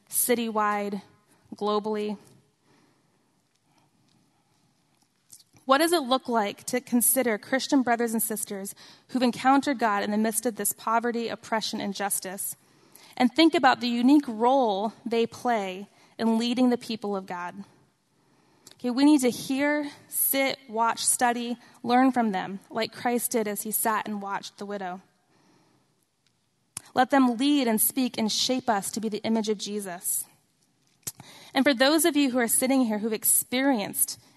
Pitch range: 205-245 Hz